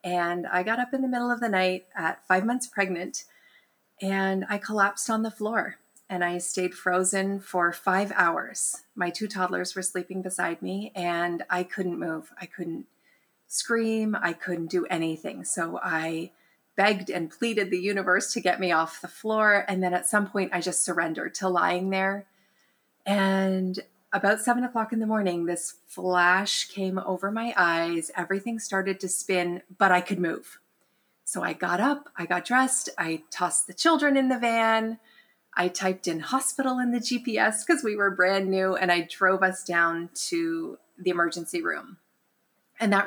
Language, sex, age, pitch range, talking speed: English, female, 30-49, 180-215 Hz, 175 wpm